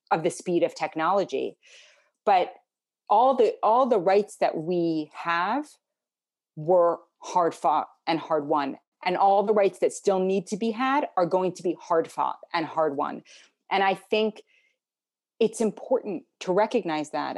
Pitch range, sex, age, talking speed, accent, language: 165-220 Hz, female, 30-49, 160 wpm, American, English